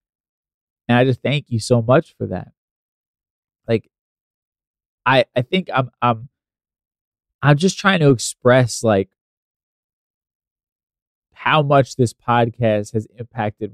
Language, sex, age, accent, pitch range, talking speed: English, male, 20-39, American, 105-130 Hz, 120 wpm